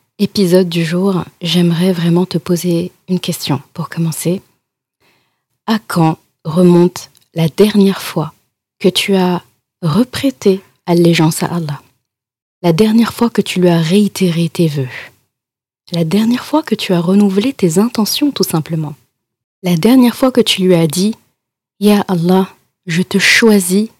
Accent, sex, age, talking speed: French, female, 30-49, 150 wpm